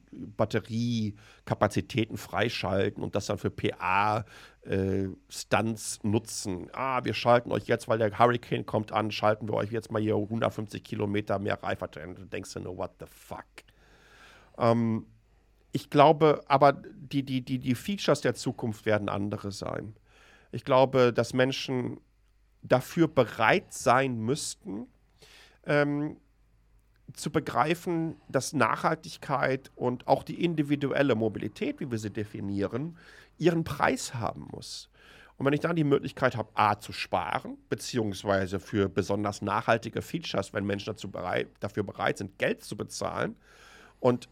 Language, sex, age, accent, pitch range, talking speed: German, male, 50-69, German, 105-135 Hz, 140 wpm